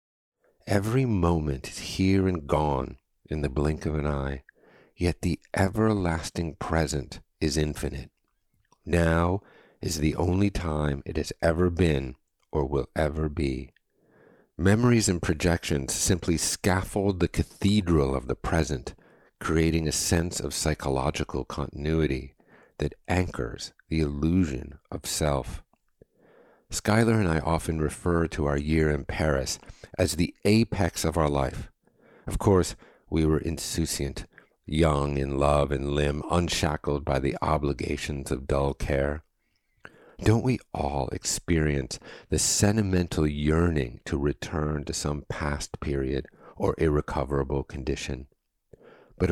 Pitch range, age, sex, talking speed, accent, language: 70-90 Hz, 50-69, male, 125 wpm, American, English